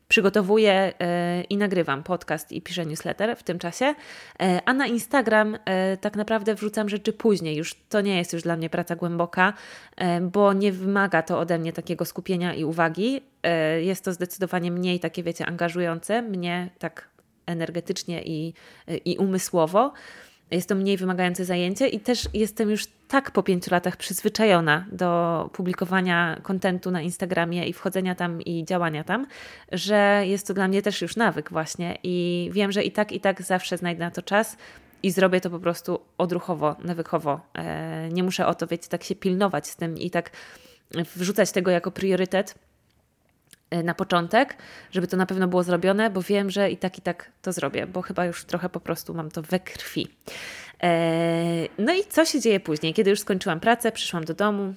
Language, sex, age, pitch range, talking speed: Polish, female, 20-39, 170-200 Hz, 175 wpm